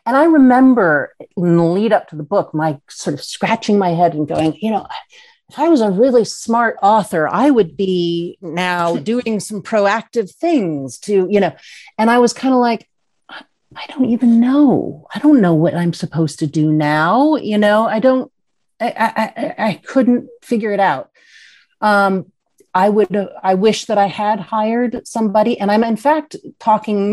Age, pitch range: 40-59, 165-235 Hz